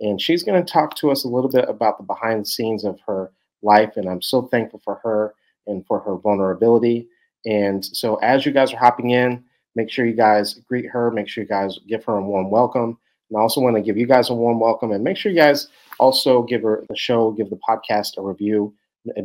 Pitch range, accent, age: 105-120 Hz, American, 30-49